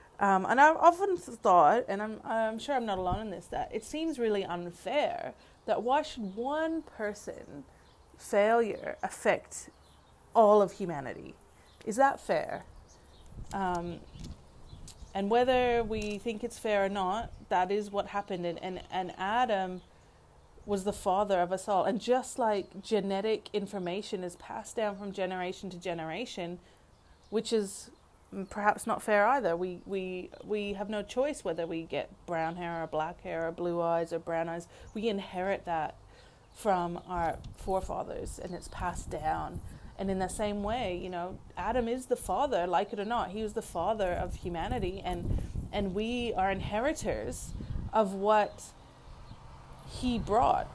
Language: English